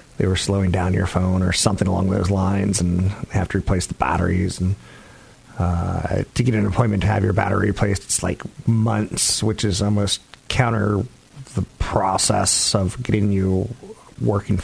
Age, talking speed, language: 40-59, 170 wpm, English